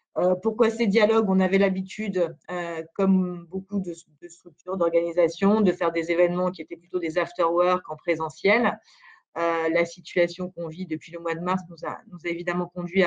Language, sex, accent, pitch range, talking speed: French, female, French, 175-210 Hz, 185 wpm